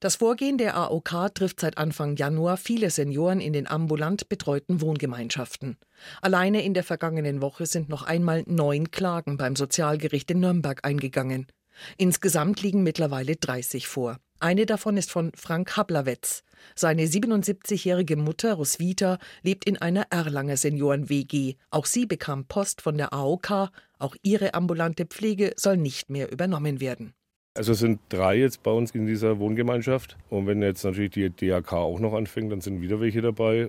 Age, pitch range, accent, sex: 50-69, 105-165 Hz, German, female